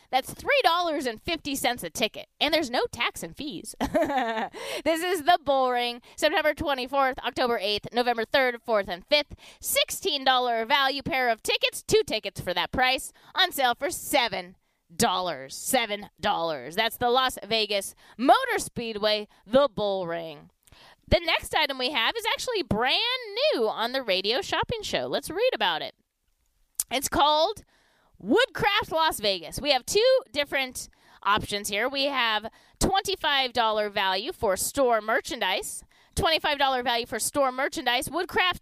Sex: female